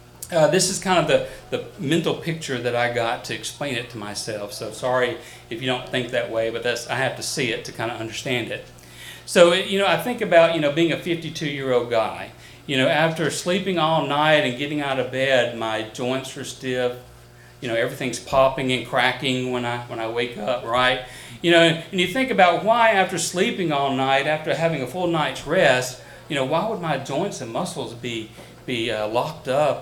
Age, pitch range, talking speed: 40-59, 120-170 Hz, 215 wpm